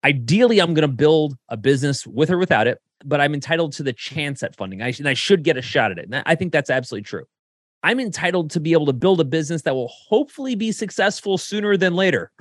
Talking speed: 250 wpm